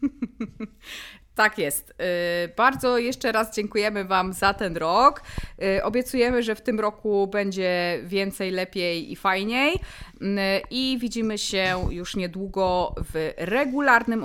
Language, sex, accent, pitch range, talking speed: Polish, female, native, 180-235 Hz, 115 wpm